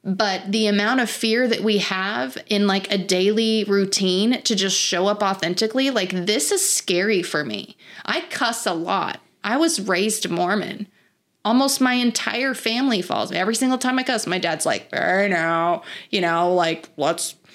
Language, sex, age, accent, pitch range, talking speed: English, female, 30-49, American, 190-230 Hz, 175 wpm